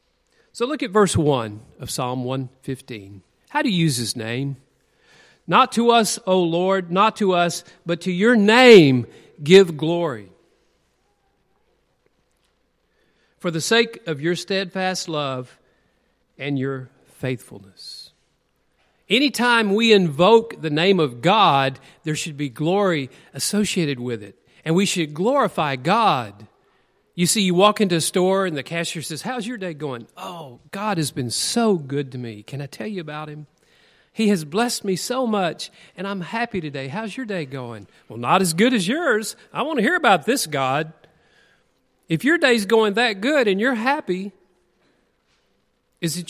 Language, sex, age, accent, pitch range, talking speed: English, male, 50-69, American, 145-215 Hz, 160 wpm